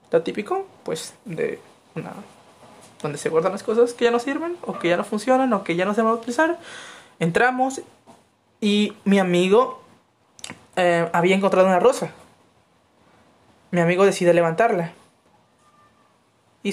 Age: 20-39